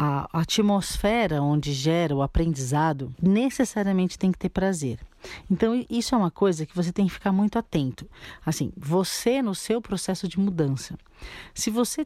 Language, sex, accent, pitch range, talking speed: Portuguese, female, Brazilian, 155-190 Hz, 160 wpm